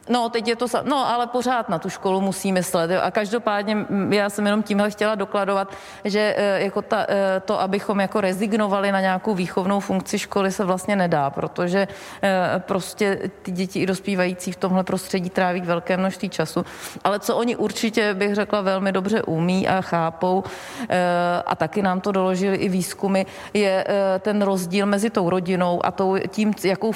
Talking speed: 170 wpm